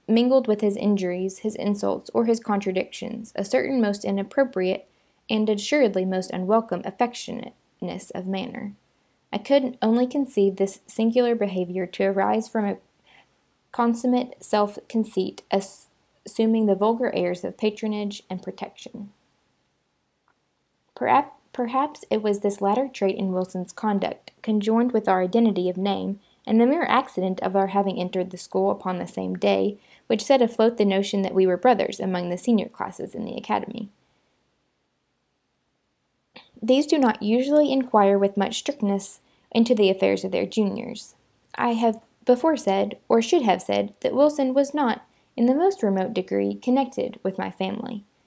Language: English